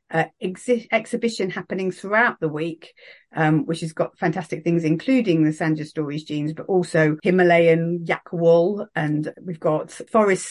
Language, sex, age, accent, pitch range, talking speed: English, female, 40-59, British, 160-185 Hz, 155 wpm